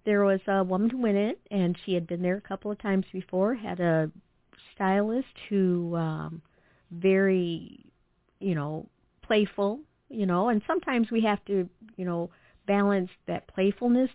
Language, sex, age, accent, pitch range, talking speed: English, female, 50-69, American, 175-215 Hz, 160 wpm